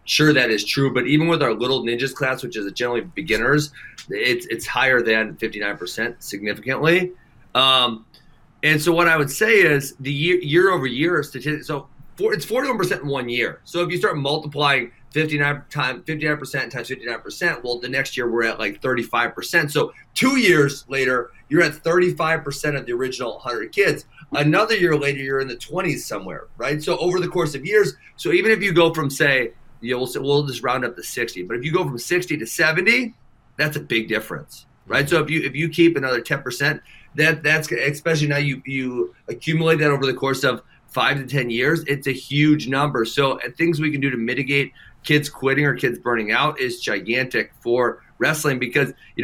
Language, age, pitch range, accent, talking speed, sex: English, 30-49, 125-160 Hz, American, 215 wpm, male